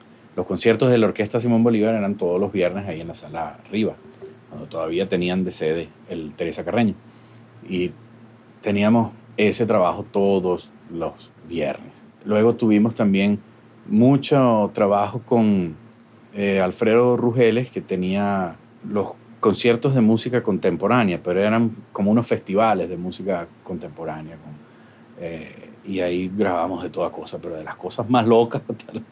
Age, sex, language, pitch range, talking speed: 30-49, male, English, 100-115 Hz, 140 wpm